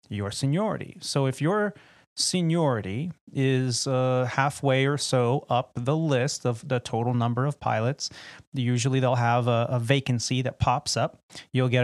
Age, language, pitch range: 30-49, English, 120-145 Hz